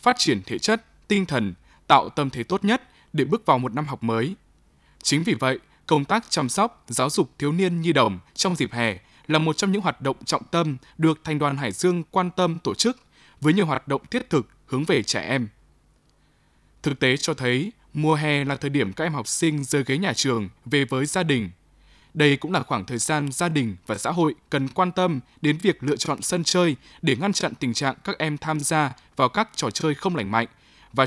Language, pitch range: Vietnamese, 125-170 Hz